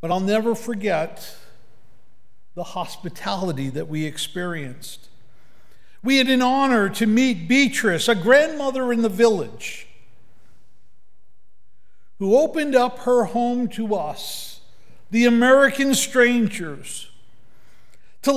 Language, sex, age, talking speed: English, male, 50-69, 105 wpm